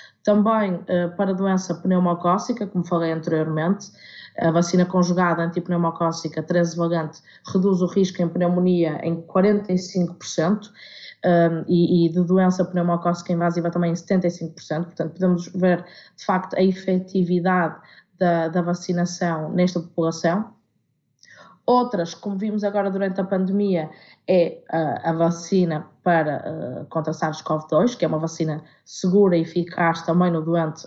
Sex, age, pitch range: female, 20-39, 170-185 Hz